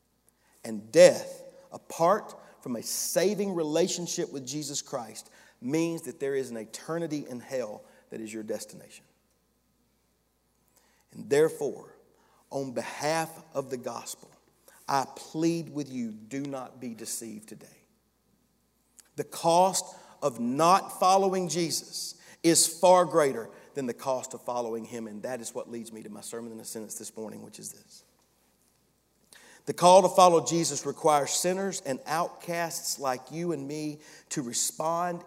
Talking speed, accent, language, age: 145 wpm, American, English, 40-59